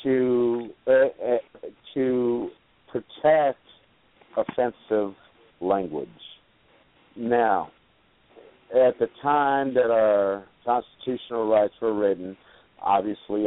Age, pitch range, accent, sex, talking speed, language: 50-69, 105-140 Hz, American, male, 80 wpm, English